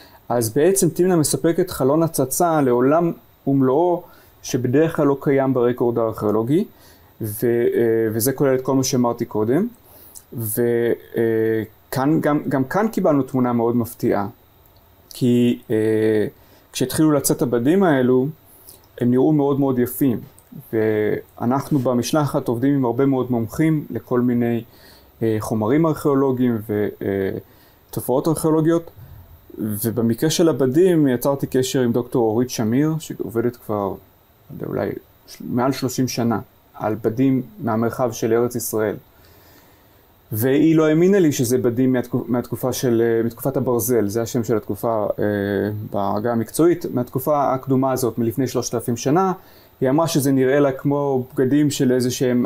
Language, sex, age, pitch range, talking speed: Hebrew, male, 30-49, 115-140 Hz, 120 wpm